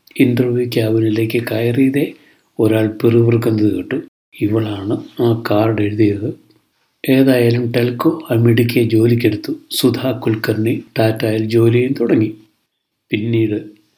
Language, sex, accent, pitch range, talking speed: Malayalam, male, native, 110-125 Hz, 85 wpm